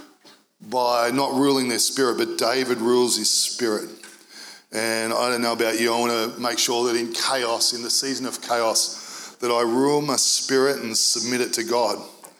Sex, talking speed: male, 190 wpm